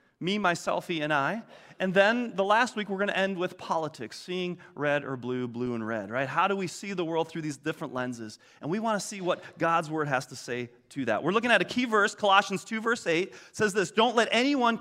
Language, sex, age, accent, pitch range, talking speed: English, male, 30-49, American, 160-225 Hz, 250 wpm